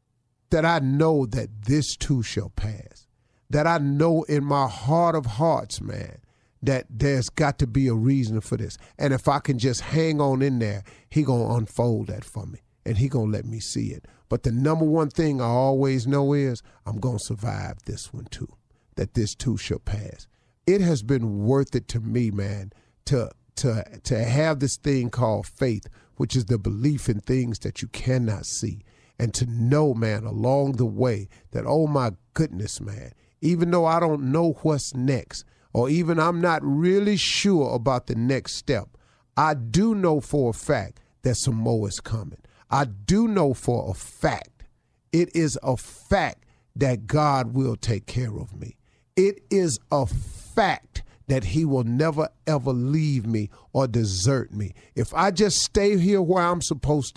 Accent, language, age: American, English, 40-59